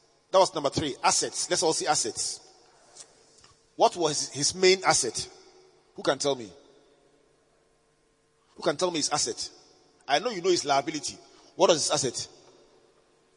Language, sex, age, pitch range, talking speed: English, male, 30-49, 165-270 Hz, 155 wpm